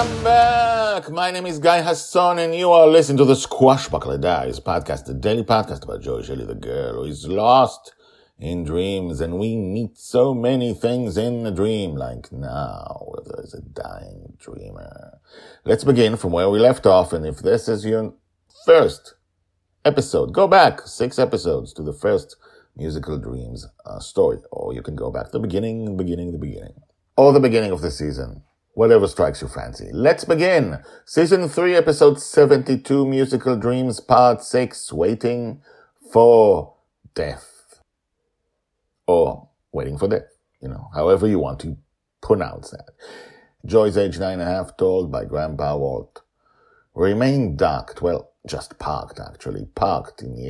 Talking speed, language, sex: 160 wpm, English, male